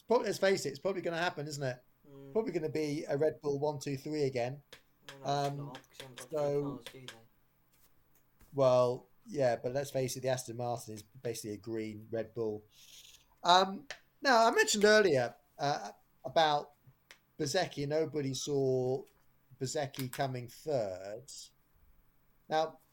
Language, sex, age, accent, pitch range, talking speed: English, male, 30-49, British, 125-160 Hz, 130 wpm